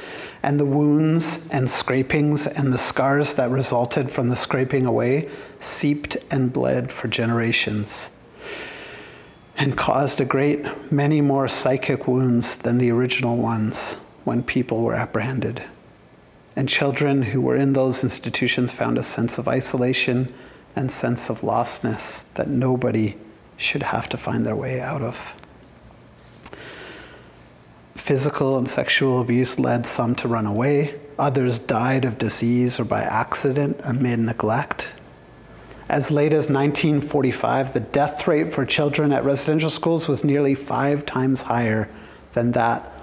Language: English